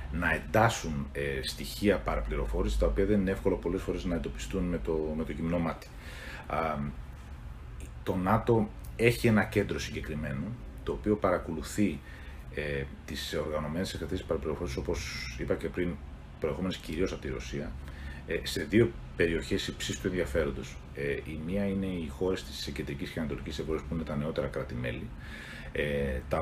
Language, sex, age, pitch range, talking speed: Greek, male, 40-59, 70-90 Hz, 135 wpm